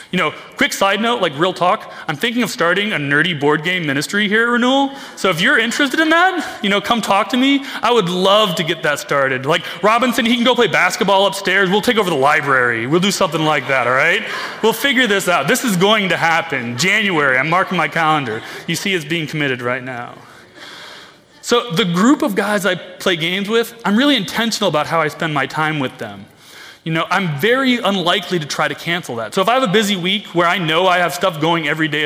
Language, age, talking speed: English, 30-49, 235 wpm